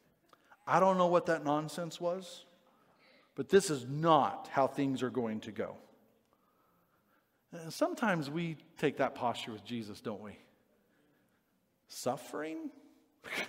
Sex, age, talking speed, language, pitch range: male, 40-59, 120 wpm, English, 150-230 Hz